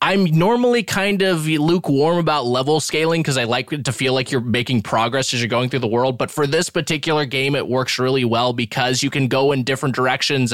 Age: 20-39